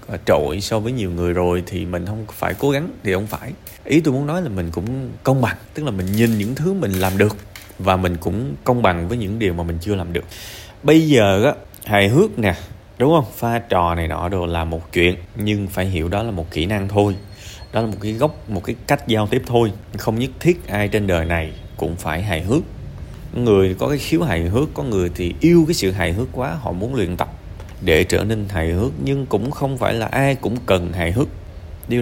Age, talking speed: 20-39, 240 wpm